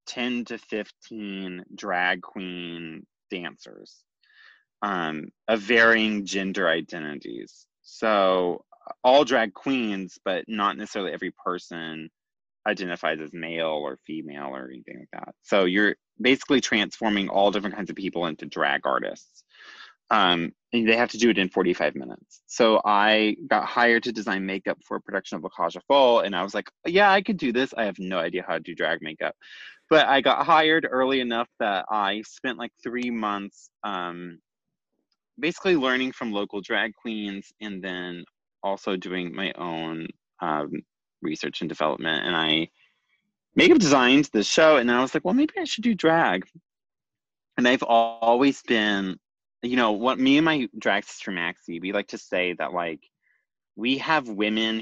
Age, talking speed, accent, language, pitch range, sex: 20-39, 165 wpm, American, English, 90-125 Hz, male